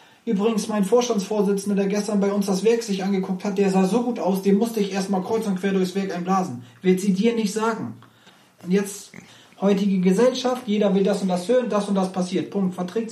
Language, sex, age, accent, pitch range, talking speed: German, male, 30-49, German, 185-220 Hz, 220 wpm